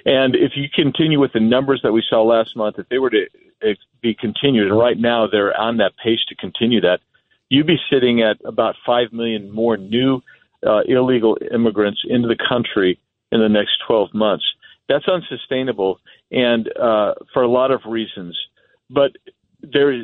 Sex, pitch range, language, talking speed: male, 115-145 Hz, English, 175 wpm